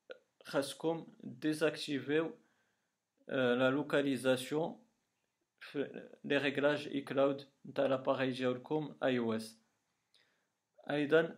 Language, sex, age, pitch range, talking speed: Arabic, male, 40-59, 130-155 Hz, 65 wpm